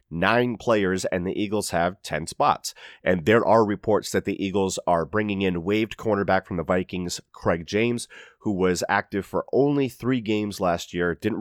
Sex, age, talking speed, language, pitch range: male, 30-49, 185 wpm, English, 90-110 Hz